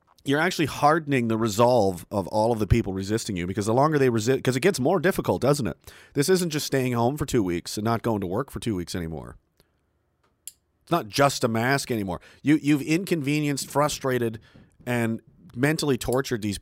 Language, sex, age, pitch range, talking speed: English, male, 30-49, 95-130 Hz, 200 wpm